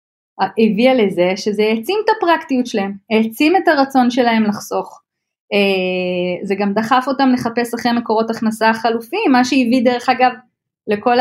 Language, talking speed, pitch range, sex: Hebrew, 140 wpm, 195-230 Hz, female